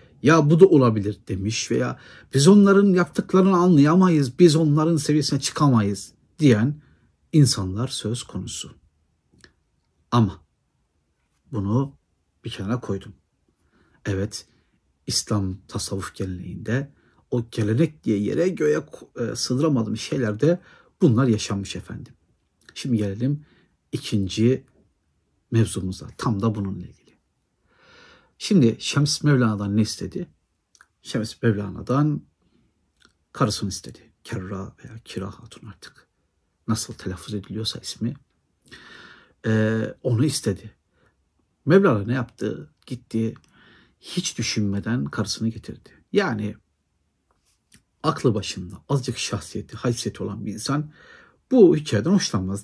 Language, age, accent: Turkish, 60-79, native